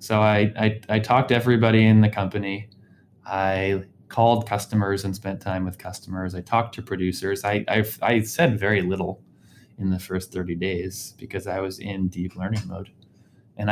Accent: American